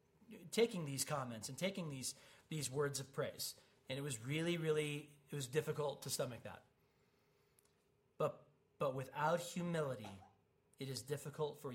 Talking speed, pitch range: 150 wpm, 135-160 Hz